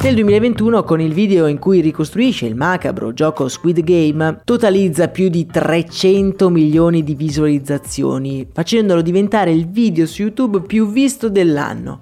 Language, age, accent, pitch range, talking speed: Italian, 20-39, native, 150-210 Hz, 145 wpm